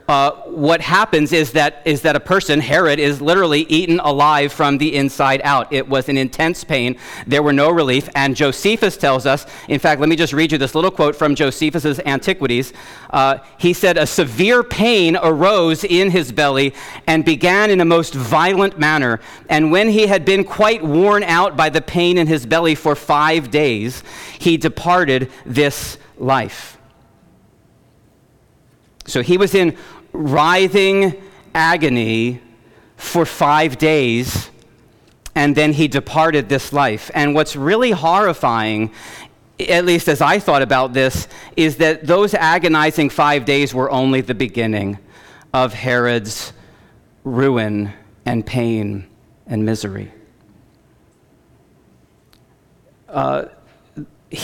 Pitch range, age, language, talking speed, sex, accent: 130-165 Hz, 40-59, English, 140 wpm, male, American